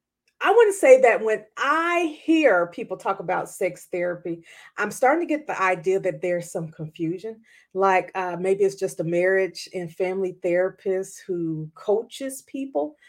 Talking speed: 165 wpm